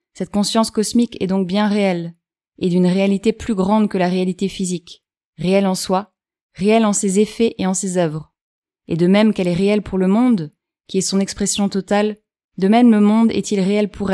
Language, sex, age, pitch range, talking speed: French, female, 20-39, 185-215 Hz, 205 wpm